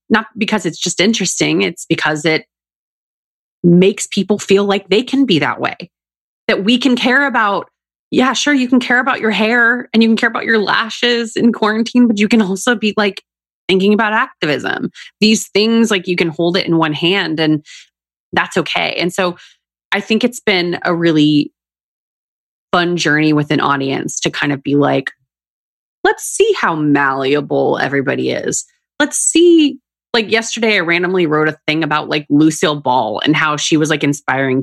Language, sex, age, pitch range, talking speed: English, female, 30-49, 145-220 Hz, 180 wpm